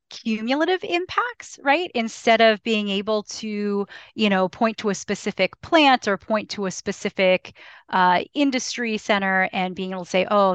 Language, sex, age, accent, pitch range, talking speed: English, female, 30-49, American, 185-215 Hz, 165 wpm